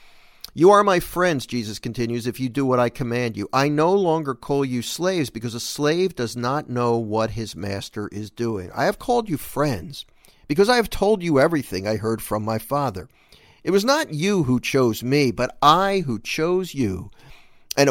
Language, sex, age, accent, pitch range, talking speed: English, male, 50-69, American, 115-180 Hz, 200 wpm